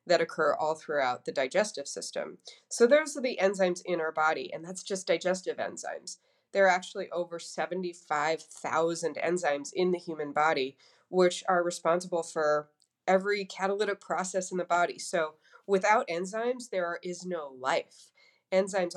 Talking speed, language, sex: 150 wpm, English, female